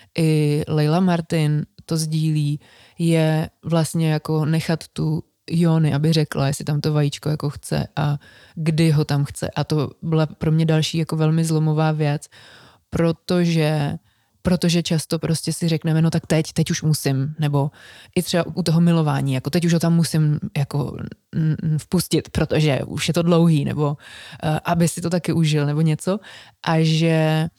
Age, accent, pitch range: 20-39, native, 155-170 Hz